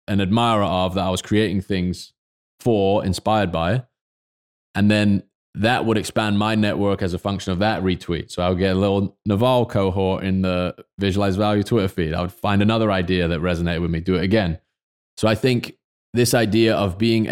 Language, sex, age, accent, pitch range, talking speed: English, male, 20-39, British, 90-110 Hz, 195 wpm